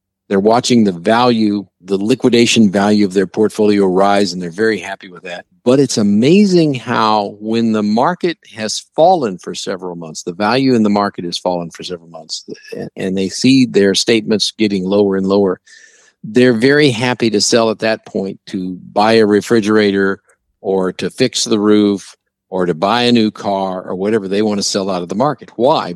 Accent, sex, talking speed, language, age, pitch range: American, male, 190 wpm, English, 50-69, 95-120 Hz